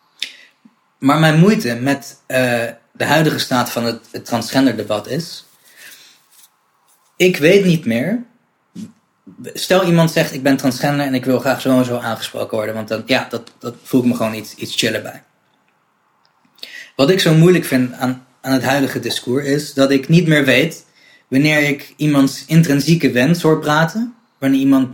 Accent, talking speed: Dutch, 170 wpm